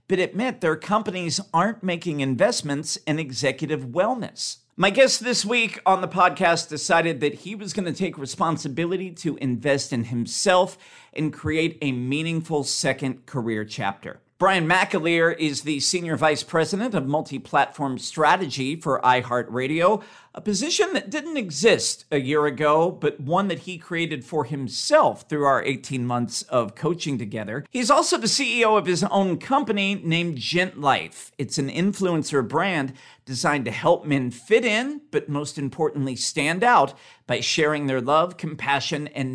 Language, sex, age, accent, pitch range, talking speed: English, male, 50-69, American, 135-185 Hz, 155 wpm